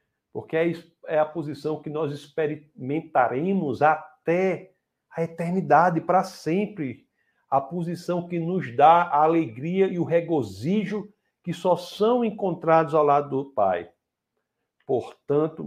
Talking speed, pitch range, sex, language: 120 wpm, 135-175 Hz, male, Portuguese